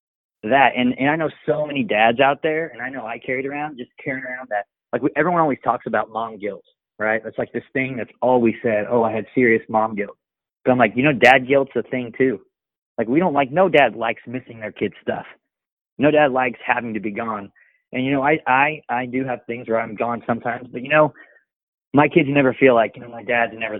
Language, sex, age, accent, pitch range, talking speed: English, male, 30-49, American, 115-140 Hz, 245 wpm